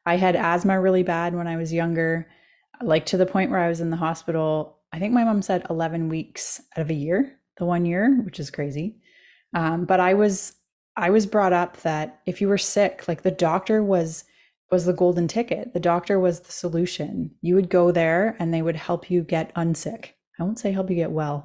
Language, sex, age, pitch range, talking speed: English, female, 20-39, 160-185 Hz, 225 wpm